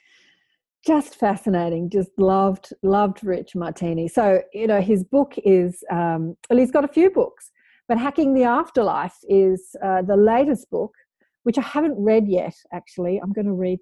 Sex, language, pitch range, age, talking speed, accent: female, English, 175-220 Hz, 40-59, 170 wpm, Australian